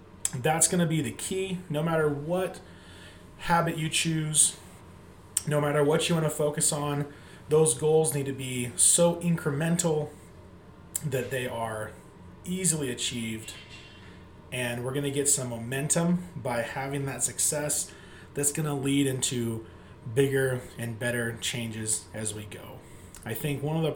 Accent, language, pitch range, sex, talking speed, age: American, English, 110-145 Hz, male, 150 wpm, 30-49